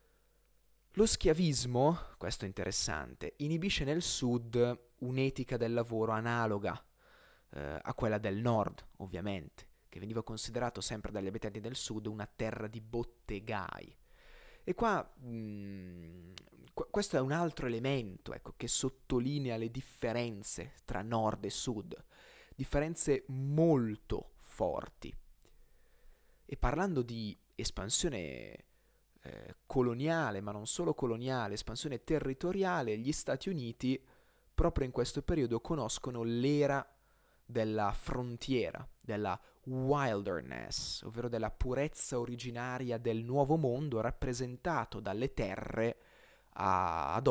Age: 20-39